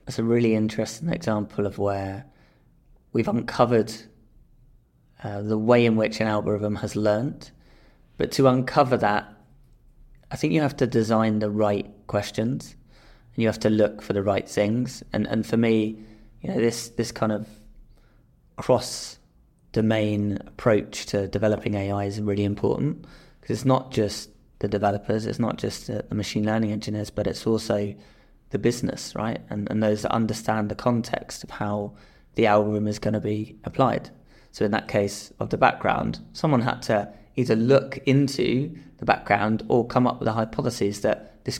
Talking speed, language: 170 wpm, English